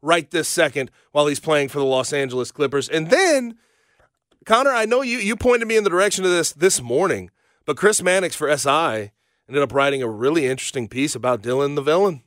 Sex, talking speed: male, 210 wpm